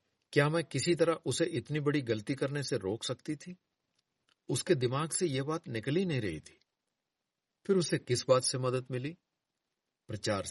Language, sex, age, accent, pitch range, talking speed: Hindi, male, 50-69, native, 115-165 Hz, 170 wpm